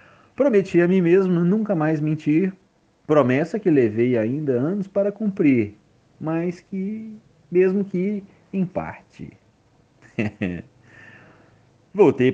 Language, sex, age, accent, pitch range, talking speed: Portuguese, male, 40-59, Brazilian, 110-150 Hz, 100 wpm